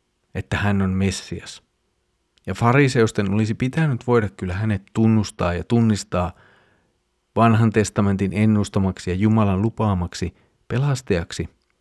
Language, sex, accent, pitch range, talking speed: Finnish, male, native, 90-115 Hz, 105 wpm